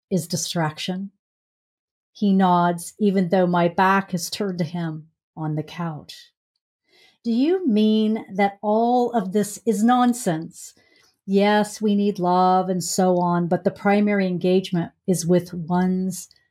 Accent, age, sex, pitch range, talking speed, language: American, 50-69, female, 175-215 Hz, 140 wpm, English